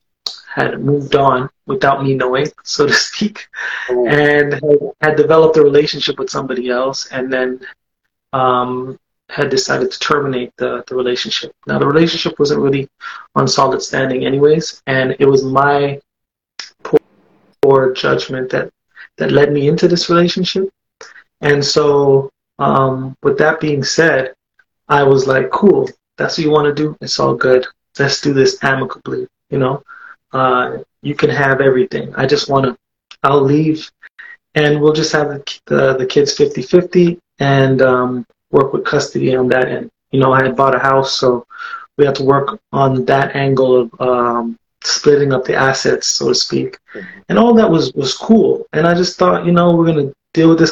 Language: English